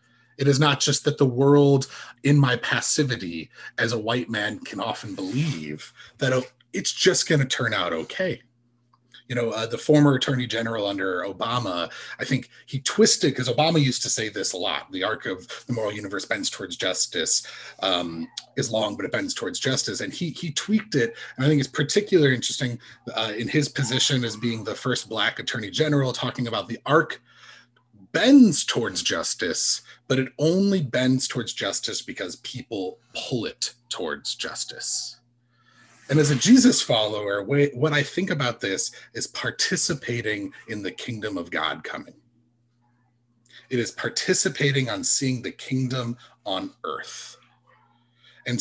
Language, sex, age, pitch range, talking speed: English, male, 30-49, 120-145 Hz, 160 wpm